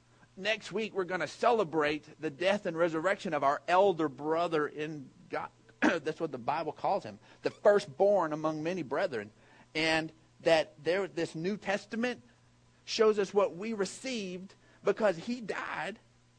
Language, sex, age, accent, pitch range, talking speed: English, male, 50-69, American, 160-255 Hz, 150 wpm